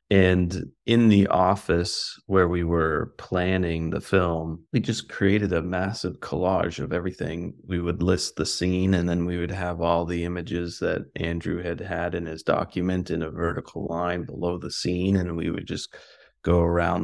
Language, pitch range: Chinese, 85-95 Hz